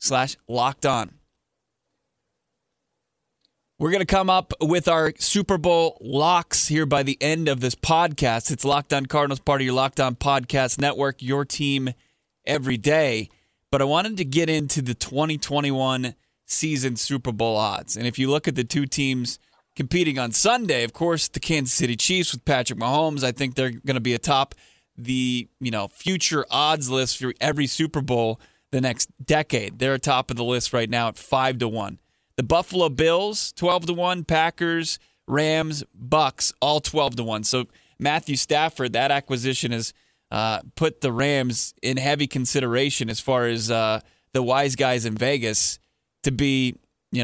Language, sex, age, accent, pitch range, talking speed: English, male, 20-39, American, 125-150 Hz, 175 wpm